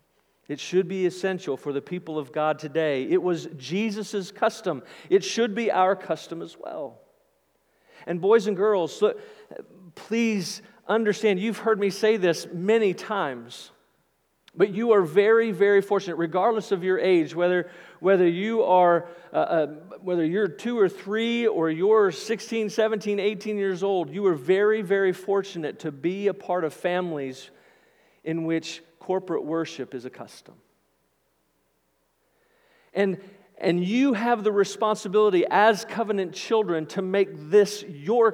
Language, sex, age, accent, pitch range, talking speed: English, male, 50-69, American, 175-220 Hz, 145 wpm